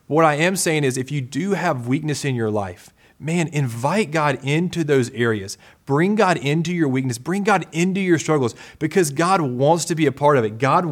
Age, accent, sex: 30-49, American, male